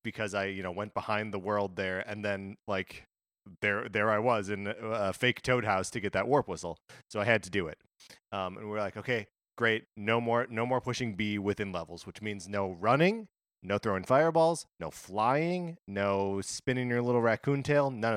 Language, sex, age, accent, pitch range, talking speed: English, male, 30-49, American, 100-120 Hz, 210 wpm